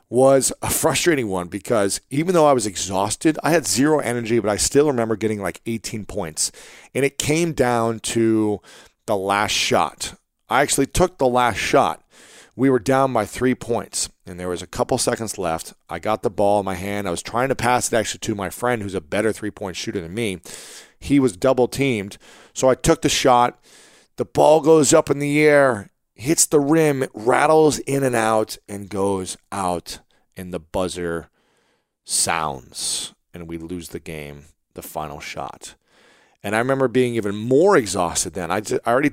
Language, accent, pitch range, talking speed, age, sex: English, American, 95-130 Hz, 190 wpm, 40-59, male